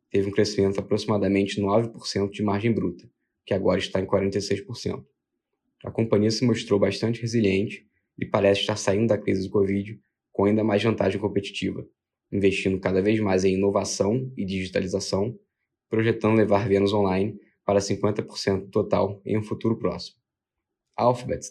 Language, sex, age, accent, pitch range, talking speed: Portuguese, male, 10-29, Brazilian, 100-110 Hz, 150 wpm